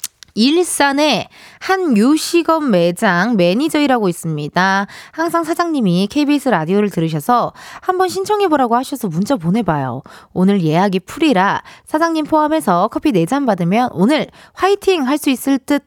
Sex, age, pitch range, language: female, 20-39, 190-310 Hz, Korean